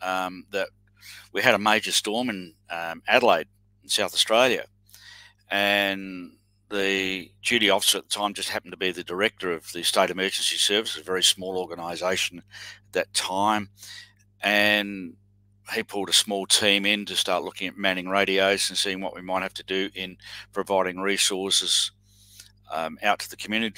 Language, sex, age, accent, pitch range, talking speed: English, male, 50-69, Australian, 95-100 Hz, 170 wpm